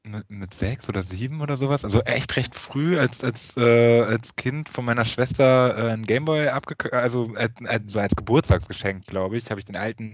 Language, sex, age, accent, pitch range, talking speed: German, male, 20-39, German, 110-135 Hz, 200 wpm